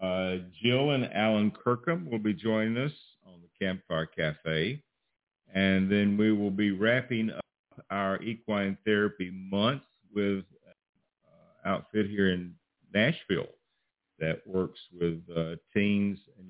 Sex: male